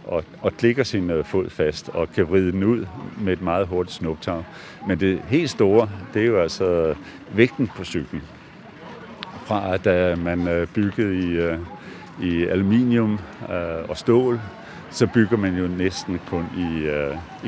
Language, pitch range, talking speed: Danish, 85-105 Hz, 170 wpm